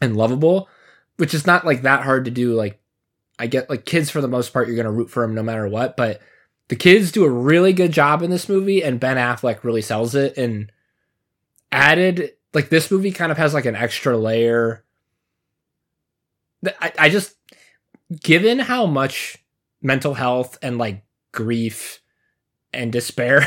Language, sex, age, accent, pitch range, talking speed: English, male, 20-39, American, 115-155 Hz, 180 wpm